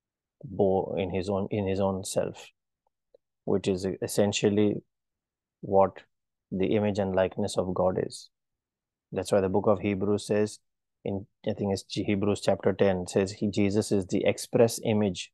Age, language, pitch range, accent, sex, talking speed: 30-49, English, 100-110 Hz, Indian, male, 155 wpm